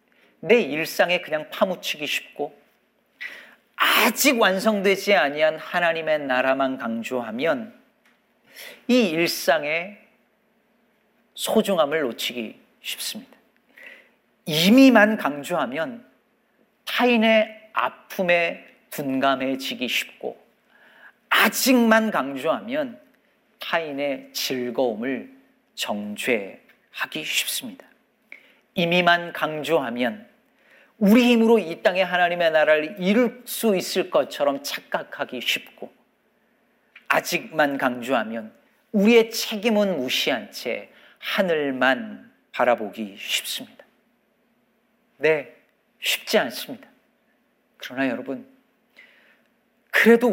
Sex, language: male, Korean